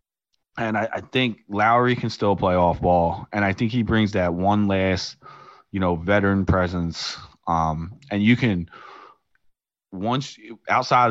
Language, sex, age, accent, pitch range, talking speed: English, male, 20-39, American, 85-105 Hz, 150 wpm